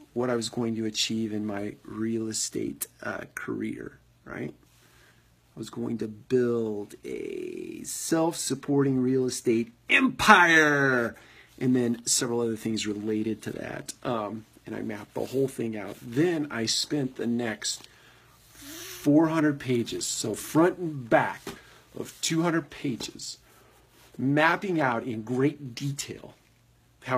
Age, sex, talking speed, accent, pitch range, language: 40-59, male, 130 wpm, American, 110-130 Hz, English